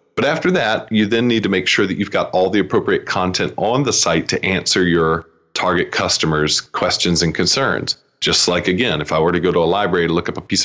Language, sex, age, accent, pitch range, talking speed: English, male, 40-59, American, 85-100 Hz, 240 wpm